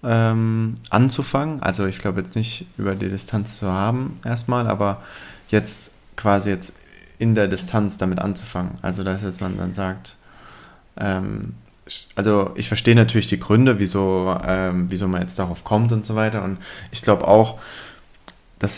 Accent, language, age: German, German, 20-39